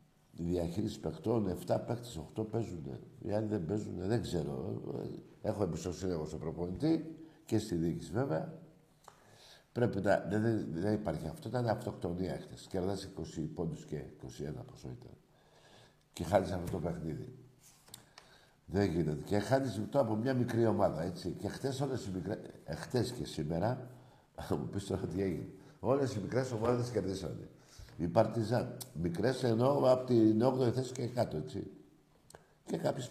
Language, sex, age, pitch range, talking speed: Greek, male, 60-79, 95-125 Hz, 150 wpm